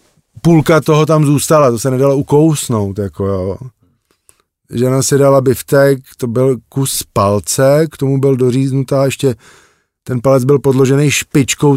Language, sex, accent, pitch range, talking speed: Czech, male, native, 115-140 Hz, 145 wpm